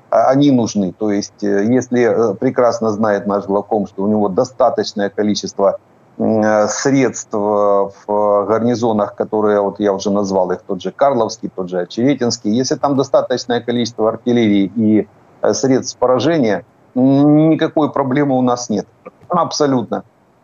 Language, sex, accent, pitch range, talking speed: Ukrainian, male, native, 105-130 Hz, 125 wpm